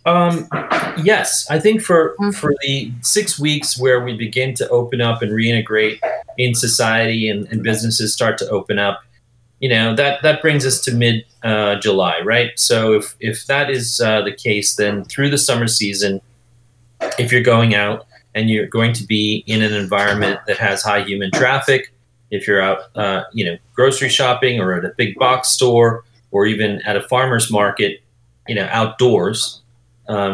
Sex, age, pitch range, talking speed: male, 30-49, 110-125 Hz, 180 wpm